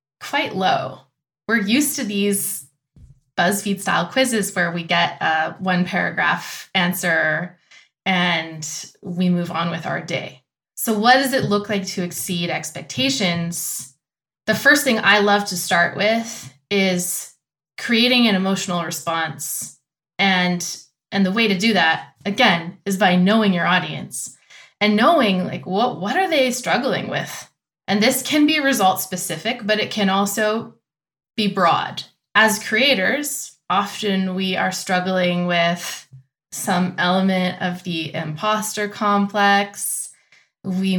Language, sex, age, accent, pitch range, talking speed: English, female, 20-39, American, 170-210 Hz, 135 wpm